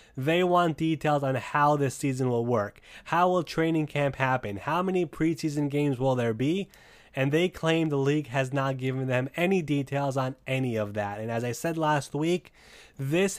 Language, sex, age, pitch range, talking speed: English, male, 20-39, 120-150 Hz, 195 wpm